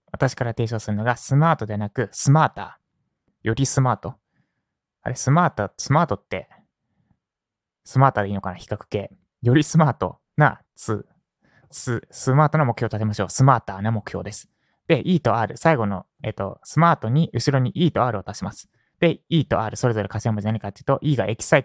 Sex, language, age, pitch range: male, Japanese, 20-39, 110-140 Hz